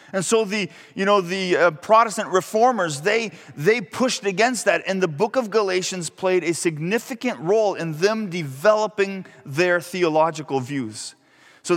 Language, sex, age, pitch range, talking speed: English, male, 30-49, 165-225 Hz, 150 wpm